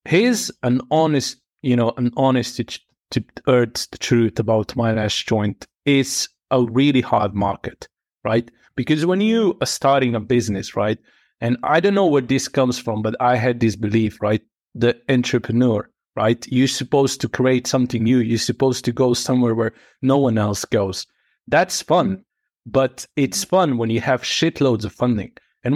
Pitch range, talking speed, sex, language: 115-140 Hz, 170 wpm, male, English